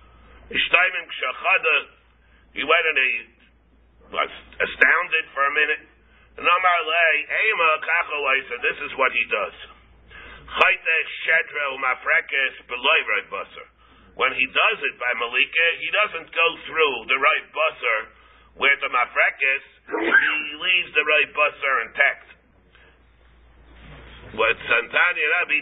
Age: 50-69